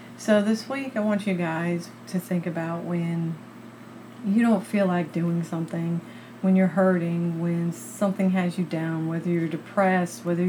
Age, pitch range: 40-59, 170-190 Hz